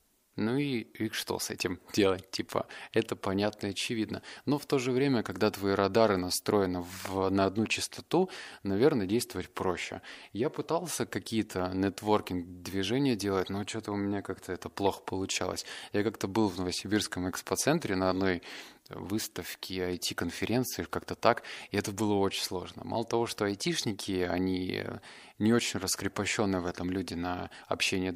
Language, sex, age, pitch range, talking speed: Russian, male, 20-39, 95-115 Hz, 150 wpm